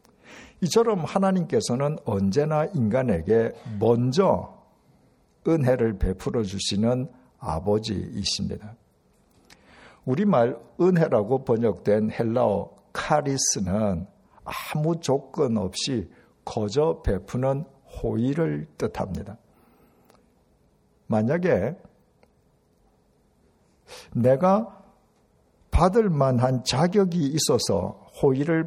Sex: male